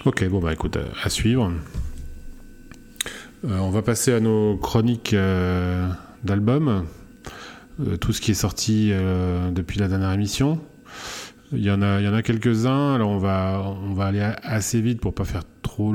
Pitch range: 95-115 Hz